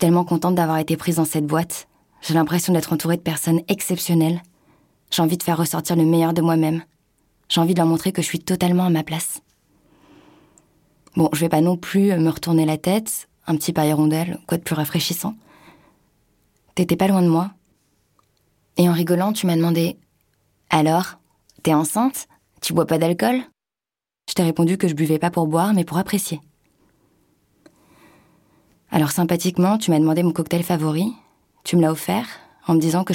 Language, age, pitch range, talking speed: French, 20-39, 160-180 Hz, 185 wpm